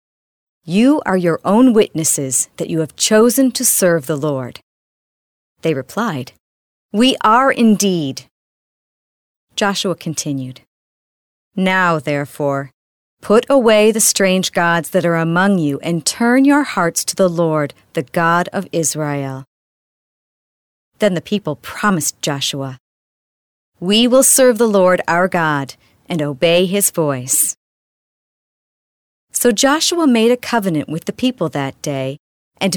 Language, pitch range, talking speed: English, 145-205 Hz, 125 wpm